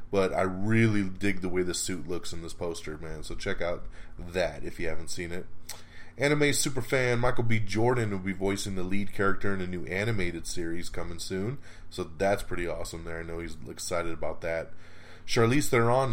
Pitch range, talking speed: 85-105 Hz, 195 wpm